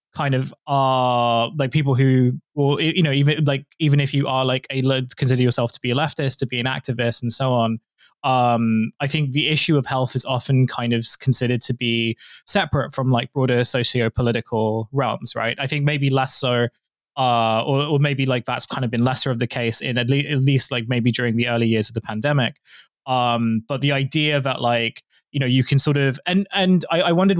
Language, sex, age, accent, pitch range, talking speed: English, male, 20-39, British, 120-145 Hz, 215 wpm